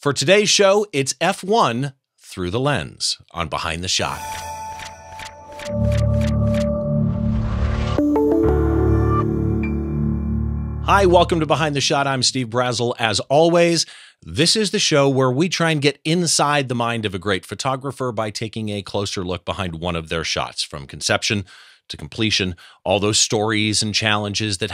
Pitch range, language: 95-145 Hz, English